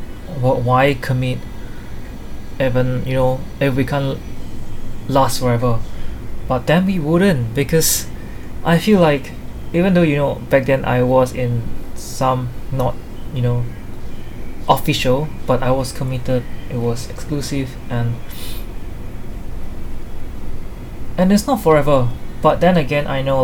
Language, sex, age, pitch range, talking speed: English, male, 20-39, 115-145 Hz, 125 wpm